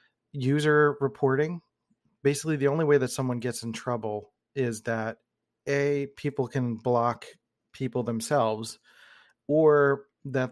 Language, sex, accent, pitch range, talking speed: English, male, American, 115-140 Hz, 120 wpm